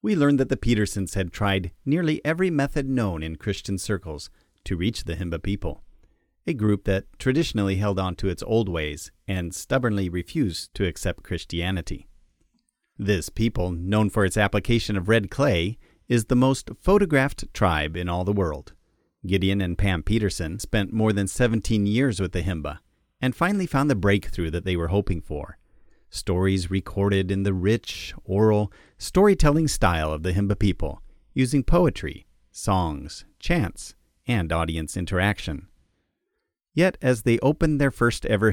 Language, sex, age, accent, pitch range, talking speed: English, male, 40-59, American, 90-115 Hz, 155 wpm